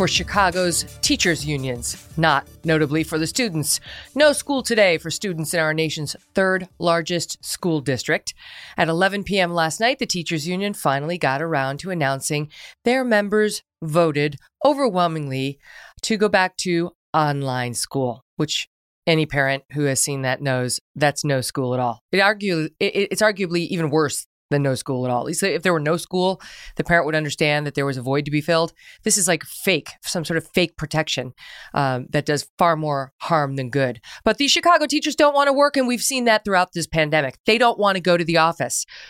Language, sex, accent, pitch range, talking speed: English, female, American, 150-205 Hz, 195 wpm